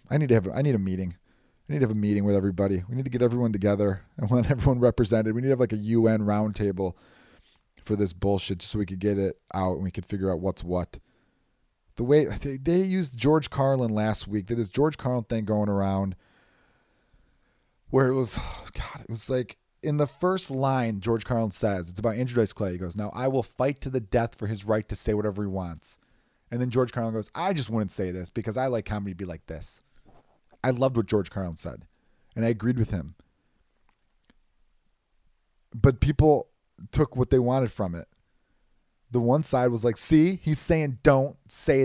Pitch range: 105-135 Hz